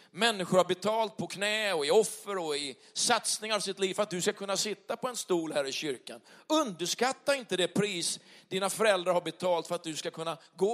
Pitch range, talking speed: 190-245 Hz, 225 wpm